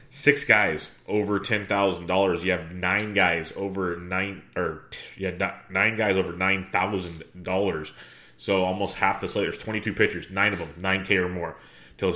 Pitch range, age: 90-100 Hz, 30-49